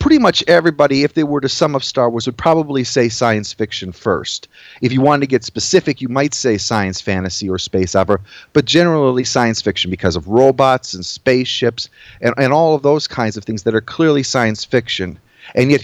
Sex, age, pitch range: male, 40-59, 110-140 Hz